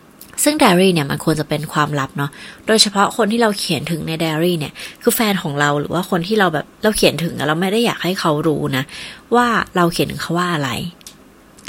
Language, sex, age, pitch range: Thai, female, 20-39, 155-210 Hz